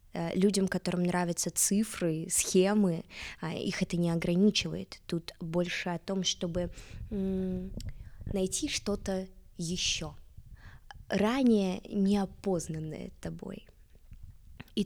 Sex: female